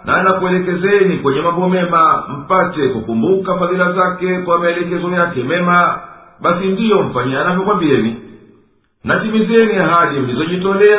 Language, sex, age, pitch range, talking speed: Swahili, male, 50-69, 160-195 Hz, 120 wpm